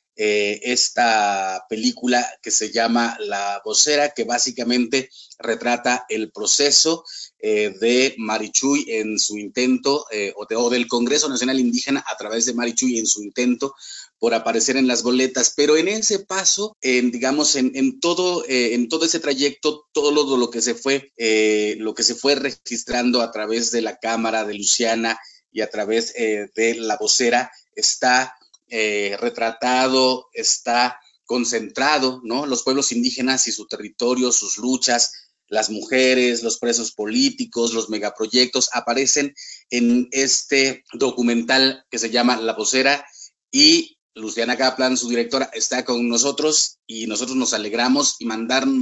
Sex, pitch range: male, 115-135 Hz